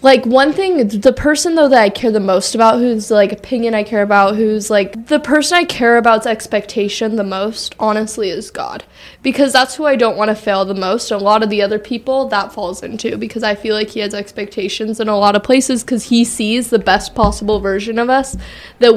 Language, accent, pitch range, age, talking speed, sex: English, American, 205-245 Hz, 10-29, 230 wpm, female